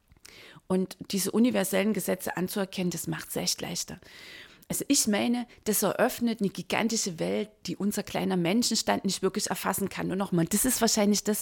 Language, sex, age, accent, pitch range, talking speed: German, female, 30-49, German, 175-210 Hz, 170 wpm